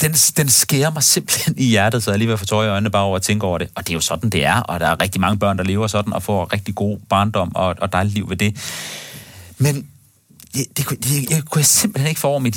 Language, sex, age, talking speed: Danish, male, 30-49, 255 wpm